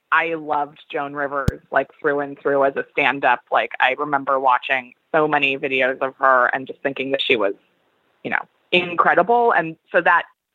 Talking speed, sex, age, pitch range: 190 wpm, female, 20-39, 140-205 Hz